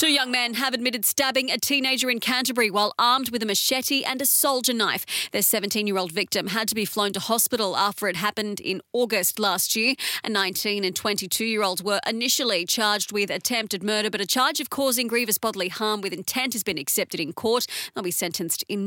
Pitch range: 200-250 Hz